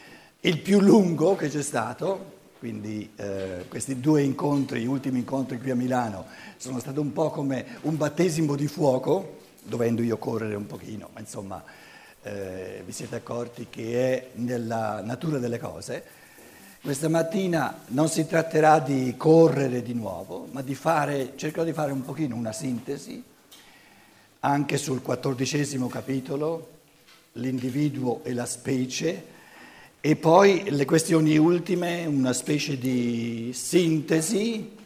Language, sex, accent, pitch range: Italian, male, native, 125-165 Hz